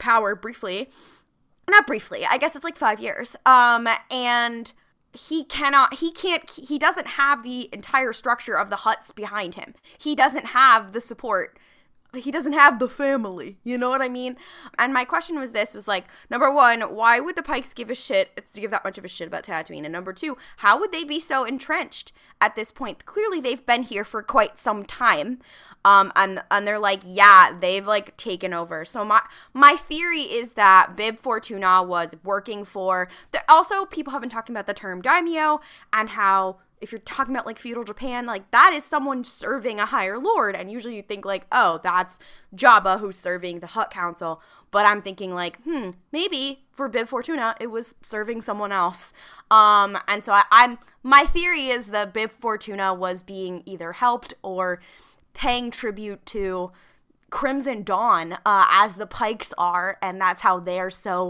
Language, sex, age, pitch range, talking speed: English, female, 20-39, 195-270 Hz, 190 wpm